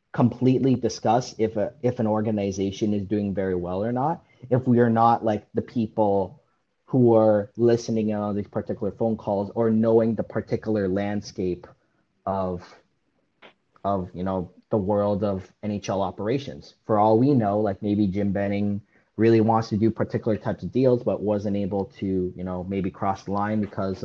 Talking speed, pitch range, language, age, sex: 170 wpm, 95-110 Hz, English, 30-49, male